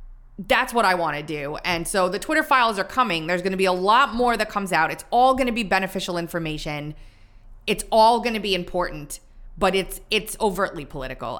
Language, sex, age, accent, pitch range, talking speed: English, female, 20-39, American, 135-210 Hz, 215 wpm